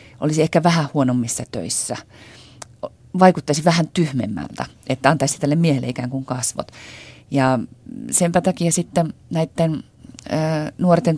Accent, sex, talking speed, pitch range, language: native, female, 115 wpm, 120-150 Hz, Finnish